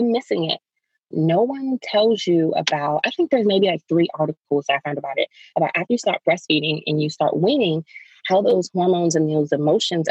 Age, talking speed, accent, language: 20-39, 195 wpm, American, English